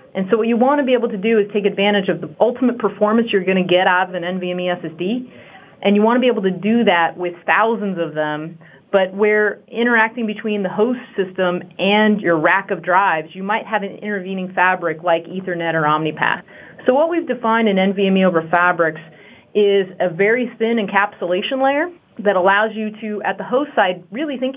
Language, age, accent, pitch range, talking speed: English, 30-49, American, 185-225 Hz, 210 wpm